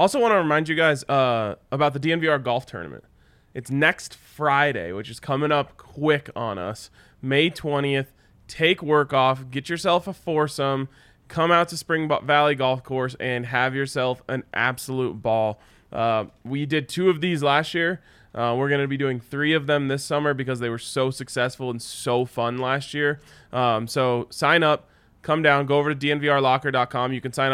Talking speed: 185 wpm